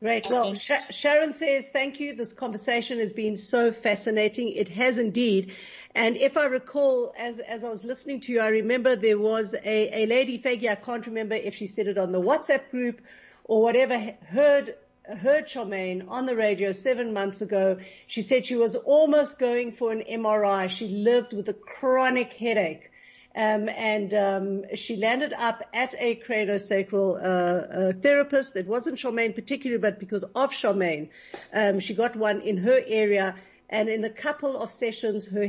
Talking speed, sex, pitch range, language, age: 180 wpm, female, 205-250 Hz, English, 50-69